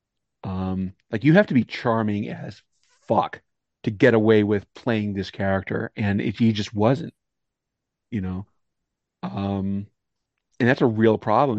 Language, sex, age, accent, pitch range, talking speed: English, male, 40-59, American, 110-150 Hz, 150 wpm